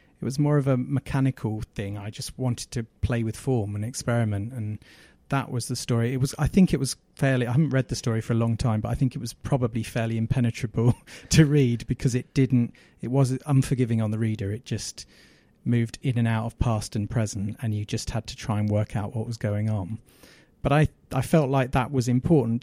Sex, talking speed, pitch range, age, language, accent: male, 230 wpm, 110-130 Hz, 30-49, English, British